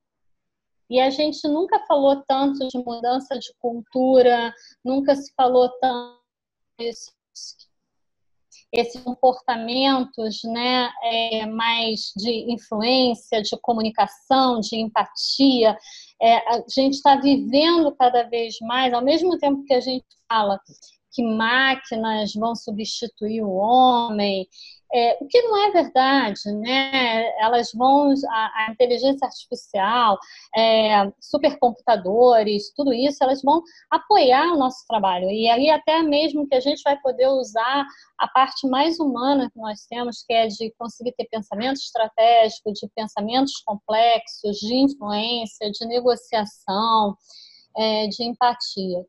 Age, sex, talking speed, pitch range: 20-39, female, 120 wpm, 225-270 Hz